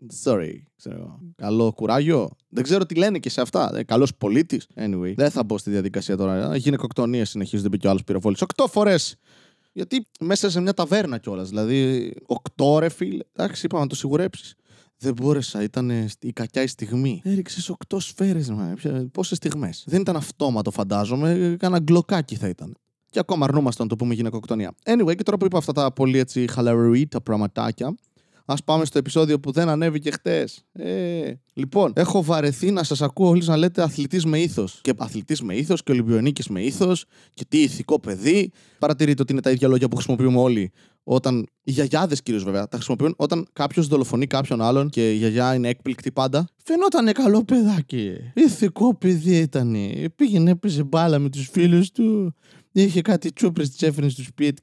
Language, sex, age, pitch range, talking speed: Greek, male, 20-39, 120-175 Hz, 180 wpm